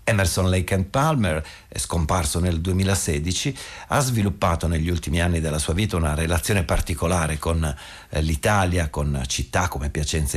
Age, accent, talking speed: 50-69, native, 140 wpm